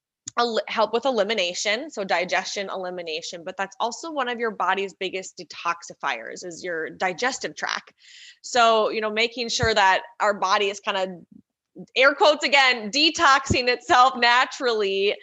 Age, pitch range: 20-39, 195-275 Hz